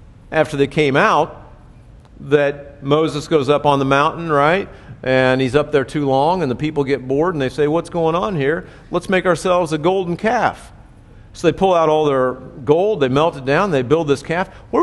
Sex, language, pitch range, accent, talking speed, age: male, English, 125-155 Hz, American, 210 wpm, 50-69